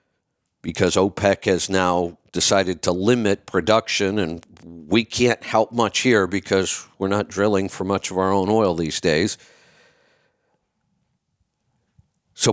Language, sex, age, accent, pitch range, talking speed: English, male, 50-69, American, 100-135 Hz, 130 wpm